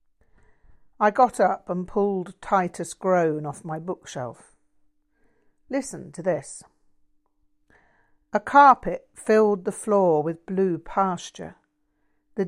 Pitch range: 155-200 Hz